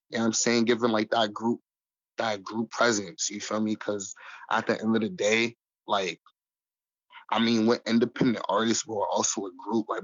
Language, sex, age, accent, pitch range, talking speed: English, male, 20-39, American, 110-125 Hz, 205 wpm